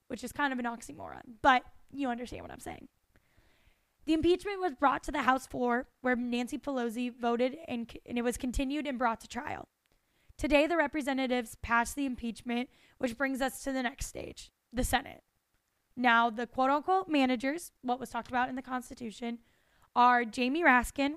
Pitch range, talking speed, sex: 245-280 Hz, 175 wpm, female